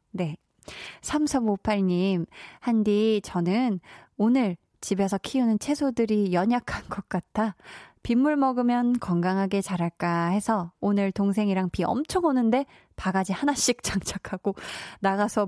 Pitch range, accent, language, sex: 190-265 Hz, native, Korean, female